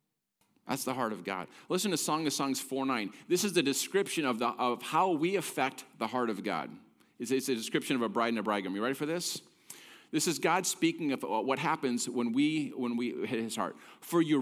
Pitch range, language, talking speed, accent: 120-175 Hz, English, 225 wpm, American